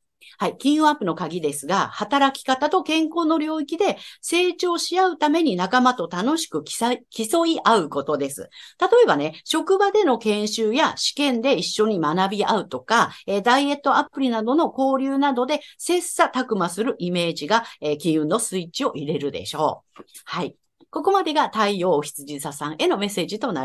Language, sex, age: Japanese, female, 50-69